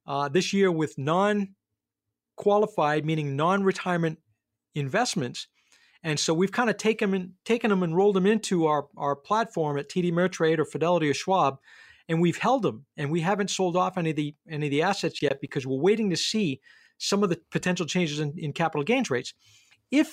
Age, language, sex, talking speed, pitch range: 40-59, English, male, 190 wpm, 145-190 Hz